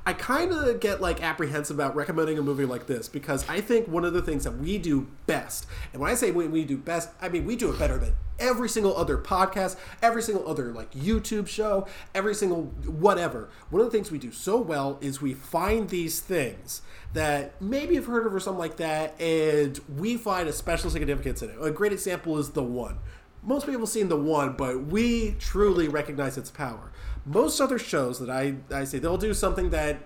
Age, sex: 30-49, male